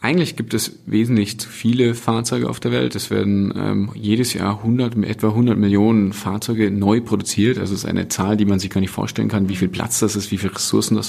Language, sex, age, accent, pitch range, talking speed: German, male, 30-49, German, 100-120 Hz, 220 wpm